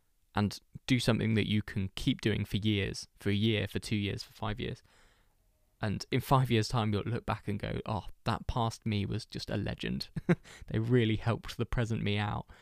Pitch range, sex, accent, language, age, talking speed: 105-125 Hz, male, British, English, 20-39, 210 wpm